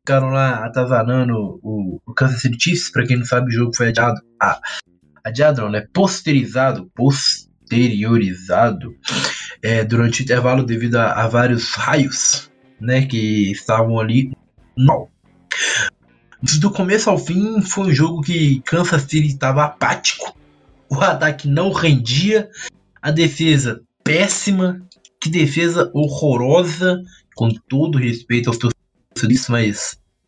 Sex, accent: male, Brazilian